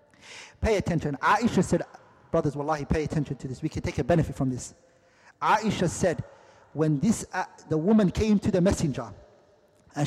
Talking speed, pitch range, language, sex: 175 wpm, 140-195 Hz, English, male